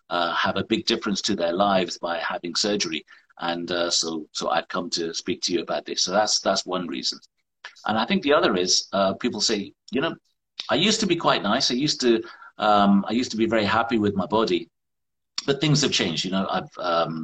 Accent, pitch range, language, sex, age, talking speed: British, 85-110 Hz, English, male, 50-69, 230 wpm